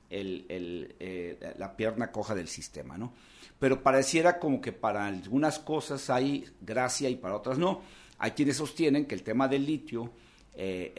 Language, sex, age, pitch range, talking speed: Spanish, male, 50-69, 105-135 Hz, 170 wpm